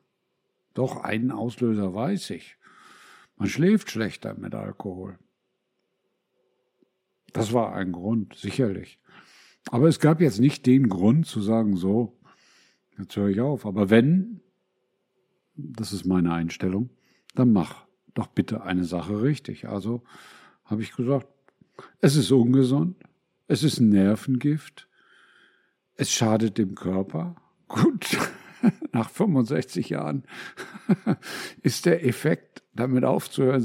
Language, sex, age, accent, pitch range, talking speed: German, male, 60-79, German, 100-135 Hz, 120 wpm